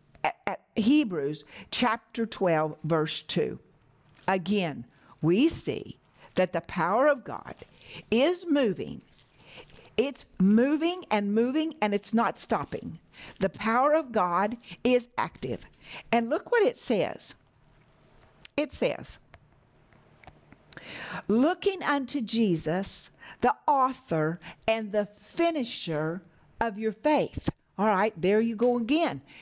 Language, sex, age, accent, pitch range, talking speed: English, female, 50-69, American, 175-240 Hz, 110 wpm